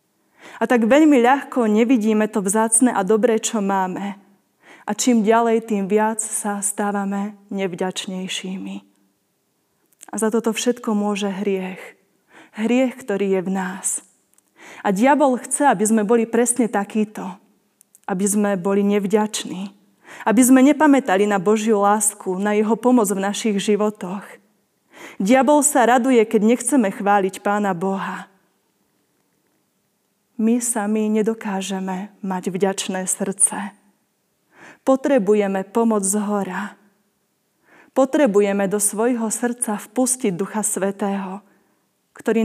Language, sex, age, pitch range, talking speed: Slovak, female, 20-39, 200-235 Hz, 115 wpm